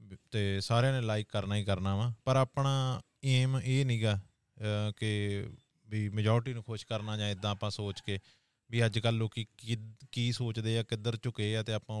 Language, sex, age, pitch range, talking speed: Punjabi, male, 30-49, 105-120 Hz, 185 wpm